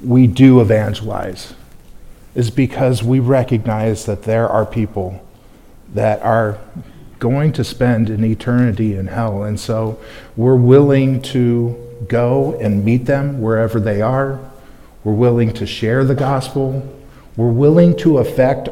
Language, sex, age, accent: English, male, 50-69, American